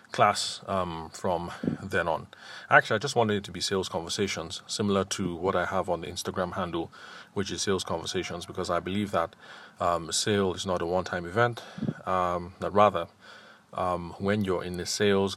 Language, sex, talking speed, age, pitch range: English, male, 185 wpm, 30-49, 90-100 Hz